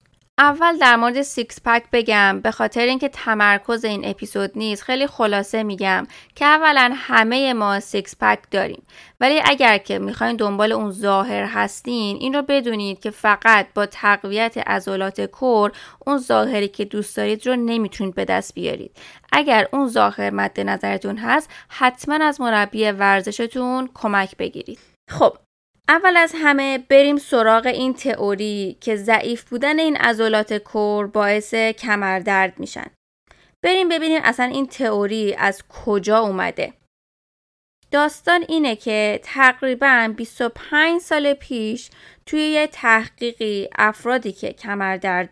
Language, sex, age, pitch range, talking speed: Persian, female, 20-39, 205-265 Hz, 135 wpm